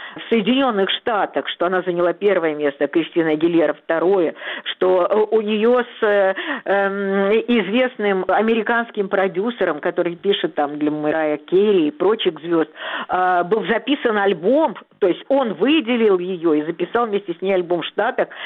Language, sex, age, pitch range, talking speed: Russian, female, 50-69, 195-265 Hz, 145 wpm